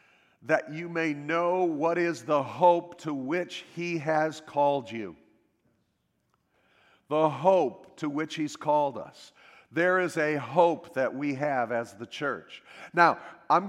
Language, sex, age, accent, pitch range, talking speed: English, male, 50-69, American, 150-180 Hz, 145 wpm